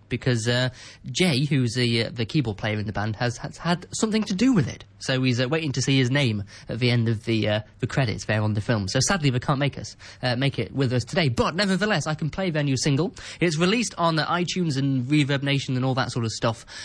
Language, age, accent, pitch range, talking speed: English, 20-39, British, 115-160 Hz, 265 wpm